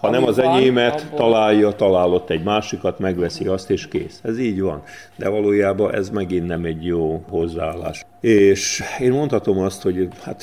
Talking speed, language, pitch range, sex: 160 wpm, Hungarian, 90-110 Hz, male